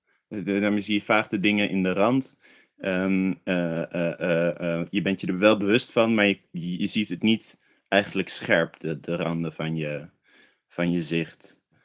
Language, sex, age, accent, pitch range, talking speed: Dutch, male, 20-39, Dutch, 95-105 Hz, 185 wpm